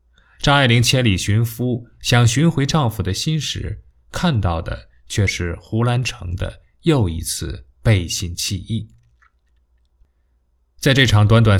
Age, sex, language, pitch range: 20-39, male, Chinese, 85-115 Hz